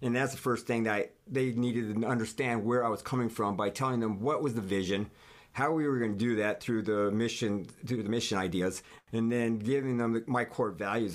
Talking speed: 230 wpm